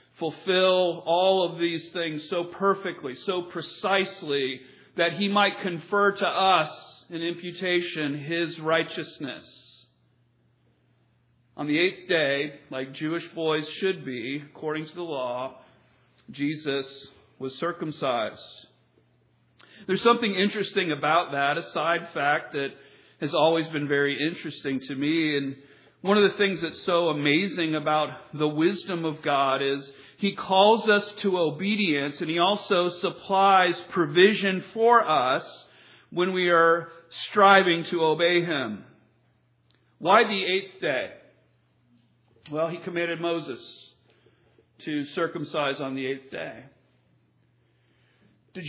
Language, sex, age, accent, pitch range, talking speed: English, male, 40-59, American, 140-190 Hz, 120 wpm